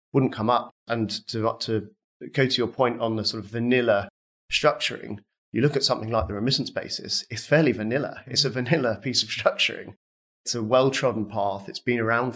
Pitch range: 110-125 Hz